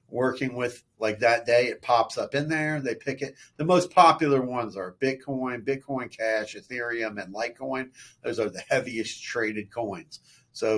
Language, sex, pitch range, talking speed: English, male, 110-140 Hz, 175 wpm